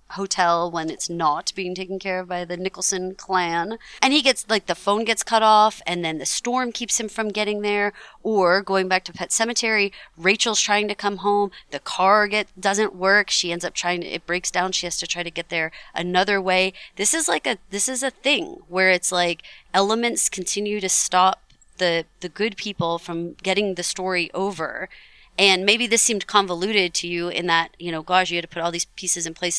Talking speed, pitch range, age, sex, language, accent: 220 wpm, 170-205 Hz, 30-49, female, English, American